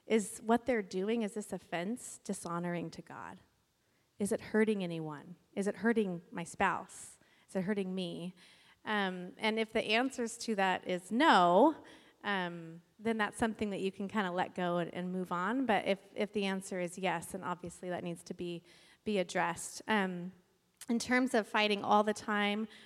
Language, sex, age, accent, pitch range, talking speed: English, female, 30-49, American, 180-215 Hz, 185 wpm